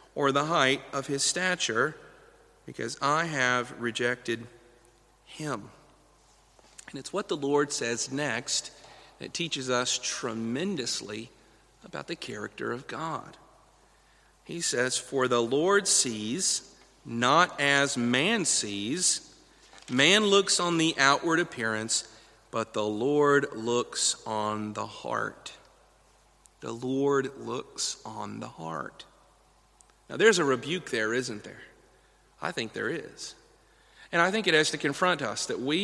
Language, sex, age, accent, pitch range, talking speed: English, male, 40-59, American, 125-155 Hz, 130 wpm